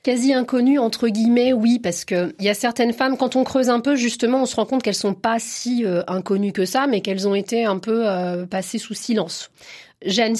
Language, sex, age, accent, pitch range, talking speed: French, female, 30-49, French, 180-235 Hz, 230 wpm